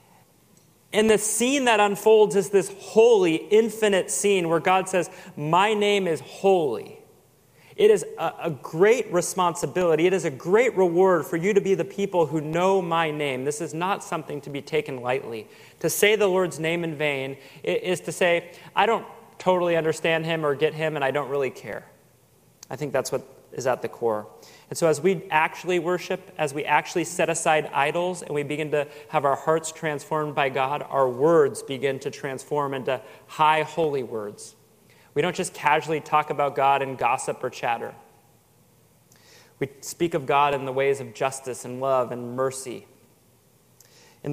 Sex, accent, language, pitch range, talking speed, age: male, American, English, 135-185 Hz, 180 wpm, 30-49